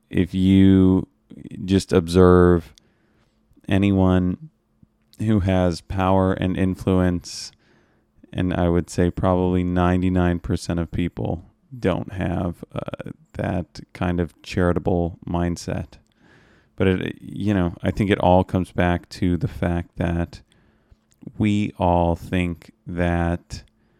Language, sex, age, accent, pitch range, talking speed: English, male, 30-49, American, 85-100 Hz, 110 wpm